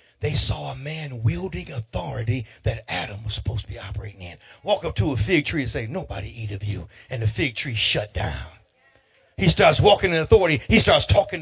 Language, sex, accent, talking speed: English, male, American, 210 wpm